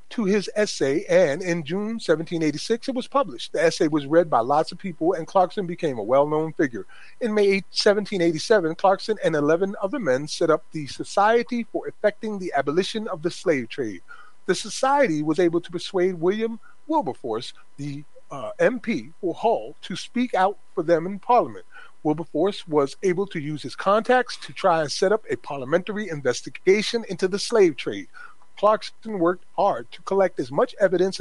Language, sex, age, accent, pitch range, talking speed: English, male, 30-49, American, 165-220 Hz, 175 wpm